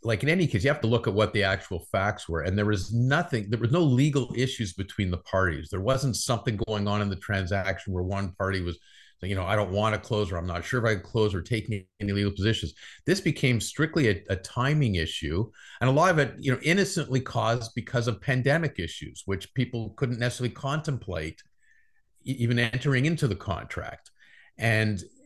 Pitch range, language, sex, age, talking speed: 105-140 Hz, English, male, 50-69, 210 wpm